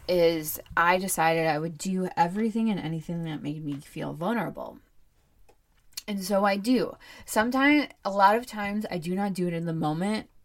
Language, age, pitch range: English, 20-39, 160-200 Hz